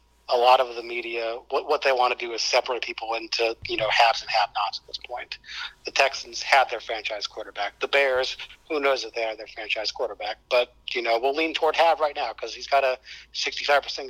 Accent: American